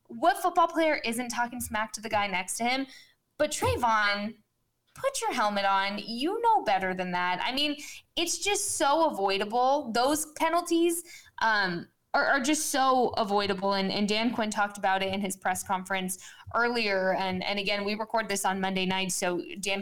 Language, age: English, 20-39